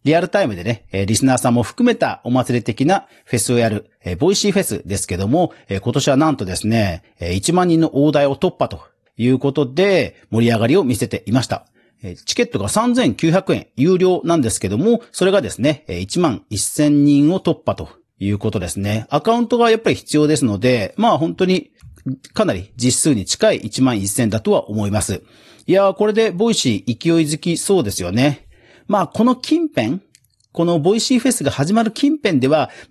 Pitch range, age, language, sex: 110-175 Hz, 40-59, Japanese, male